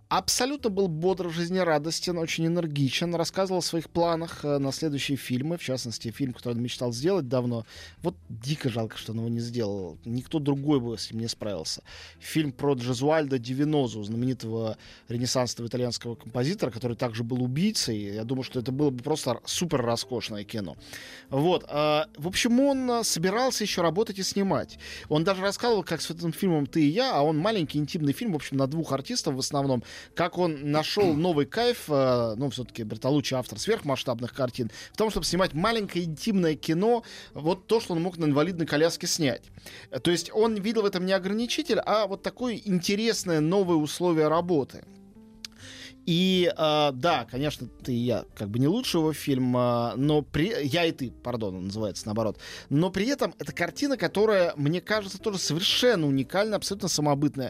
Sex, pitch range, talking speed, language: male, 125-185 Hz, 175 wpm, Russian